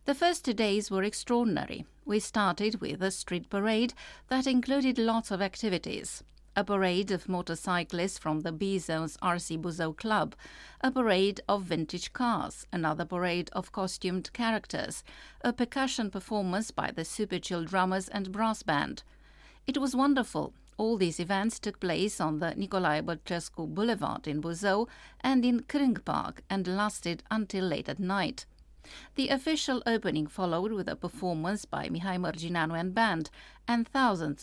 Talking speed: 150 wpm